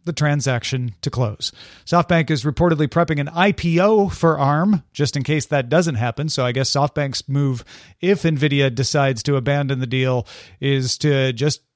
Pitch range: 130-175 Hz